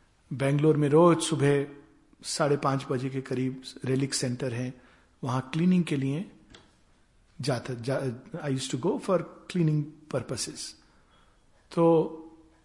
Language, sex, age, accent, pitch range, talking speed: Hindi, male, 60-79, native, 130-175 Hz, 125 wpm